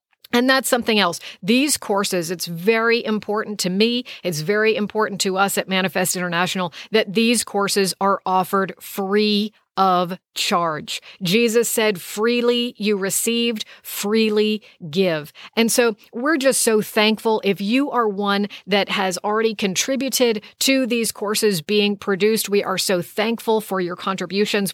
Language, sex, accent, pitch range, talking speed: English, female, American, 190-220 Hz, 145 wpm